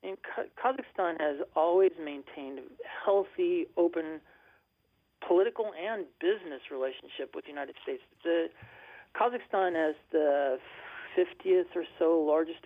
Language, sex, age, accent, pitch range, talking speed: English, male, 40-59, American, 145-200 Hz, 105 wpm